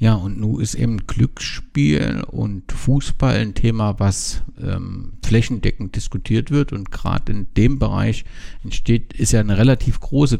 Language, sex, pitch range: German, male, 100-125 Hz